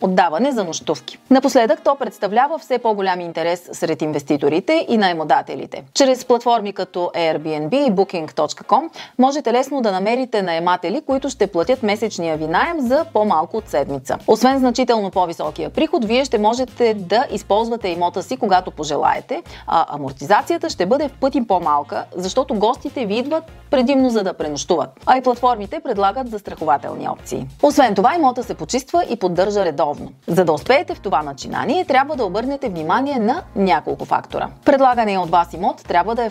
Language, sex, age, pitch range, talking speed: Bulgarian, female, 30-49, 180-255 Hz, 160 wpm